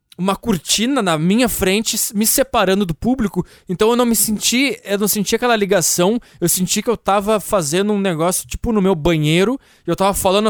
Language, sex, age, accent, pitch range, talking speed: English, male, 20-39, Brazilian, 150-200 Hz, 195 wpm